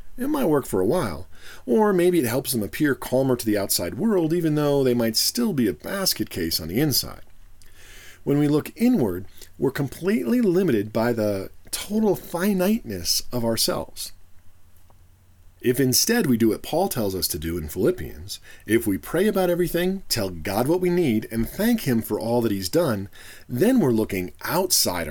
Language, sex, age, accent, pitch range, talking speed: English, male, 40-59, American, 95-155 Hz, 180 wpm